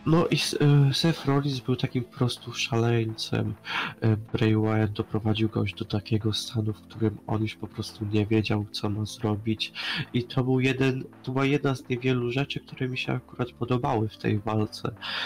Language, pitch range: Polish, 110-135 Hz